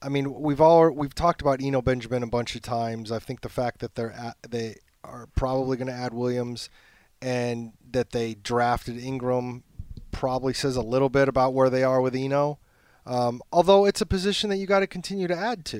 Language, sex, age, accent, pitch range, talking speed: English, male, 30-49, American, 130-160 Hz, 215 wpm